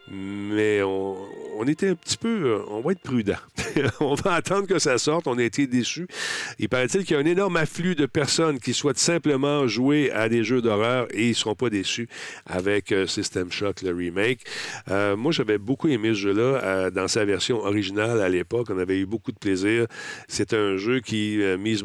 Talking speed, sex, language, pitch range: 215 wpm, male, French, 105-135 Hz